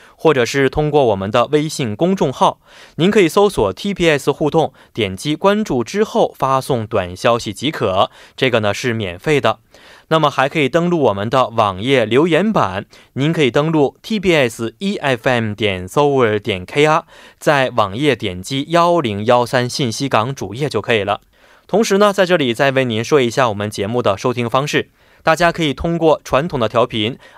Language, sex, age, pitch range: Korean, male, 20-39, 115-155 Hz